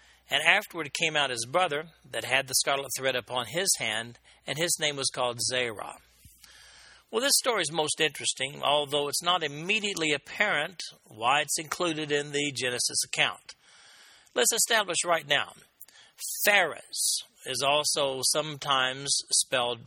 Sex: male